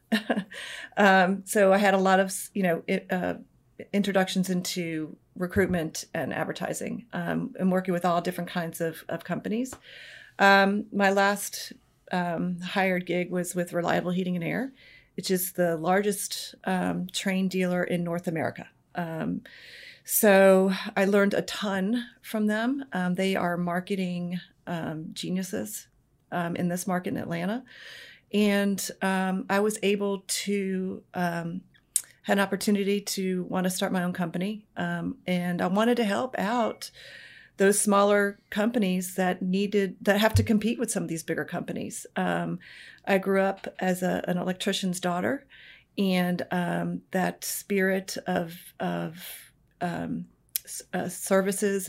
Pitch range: 180-200 Hz